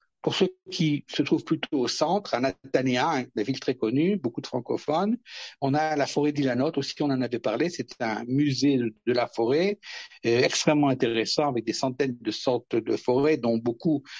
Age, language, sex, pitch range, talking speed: 60-79, French, male, 130-160 Hz, 190 wpm